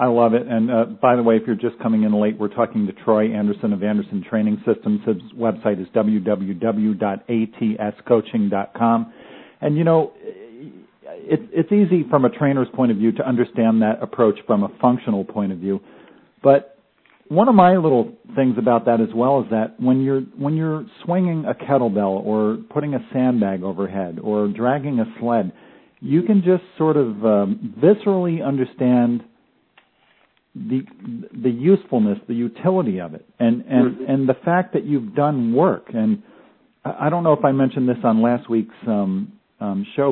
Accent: American